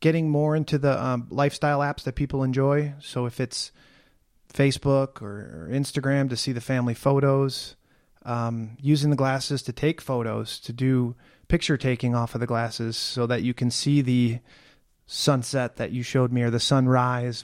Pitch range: 125-150 Hz